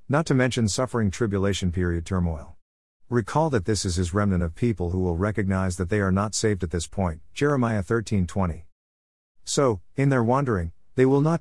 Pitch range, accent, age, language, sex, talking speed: 90-115 Hz, American, 50-69, English, male, 190 wpm